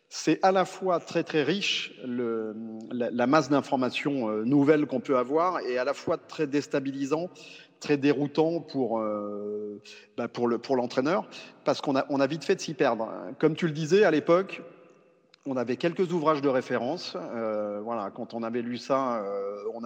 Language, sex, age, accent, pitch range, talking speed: French, male, 40-59, French, 115-155 Hz, 185 wpm